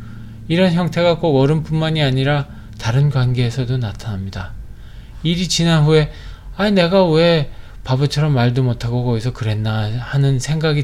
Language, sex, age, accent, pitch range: Korean, male, 20-39, native, 115-150 Hz